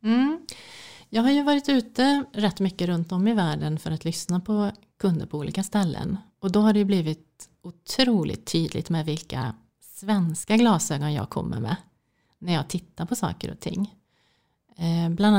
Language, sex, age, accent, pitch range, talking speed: English, female, 30-49, Swedish, 165-210 Hz, 170 wpm